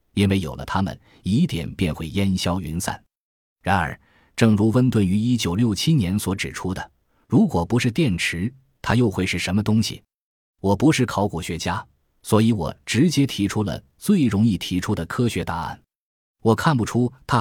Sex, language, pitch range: male, Chinese, 90-120 Hz